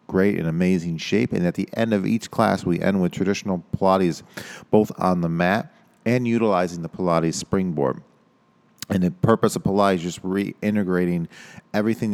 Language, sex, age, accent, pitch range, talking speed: English, male, 40-59, American, 85-100 Hz, 165 wpm